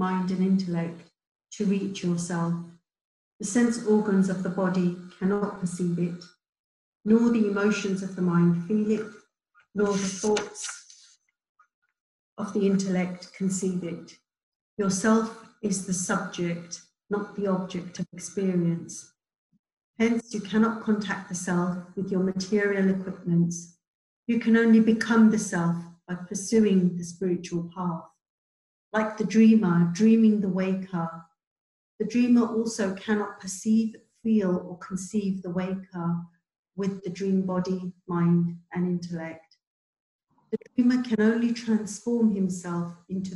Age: 50-69